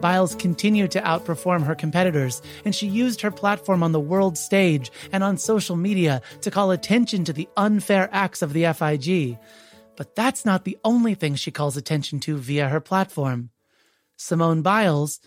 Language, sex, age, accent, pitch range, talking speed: English, male, 30-49, American, 150-195 Hz, 175 wpm